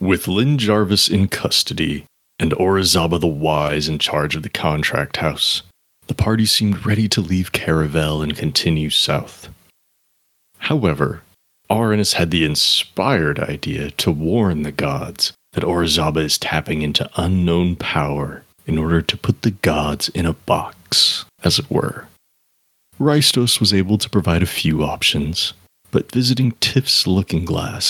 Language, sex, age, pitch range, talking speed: English, male, 30-49, 80-105 Hz, 145 wpm